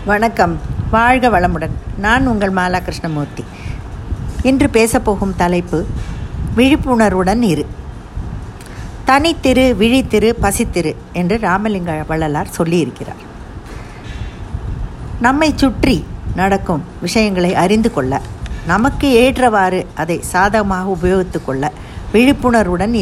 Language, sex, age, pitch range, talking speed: Tamil, female, 50-69, 170-230 Hz, 85 wpm